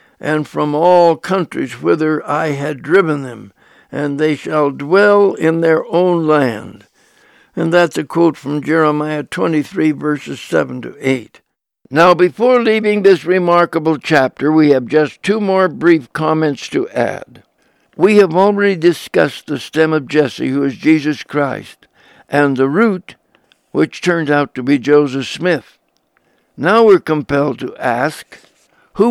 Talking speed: 145 wpm